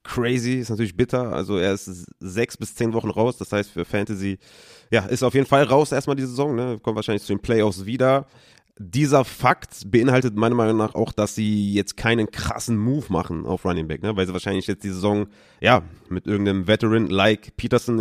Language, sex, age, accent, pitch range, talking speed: German, male, 30-49, German, 100-120 Hz, 205 wpm